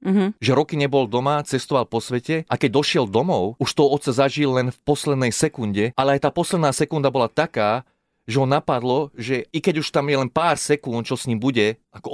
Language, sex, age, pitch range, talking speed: Slovak, male, 30-49, 115-145 Hz, 215 wpm